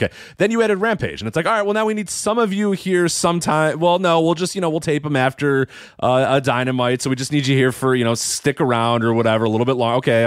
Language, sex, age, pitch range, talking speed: English, male, 30-49, 110-145 Hz, 290 wpm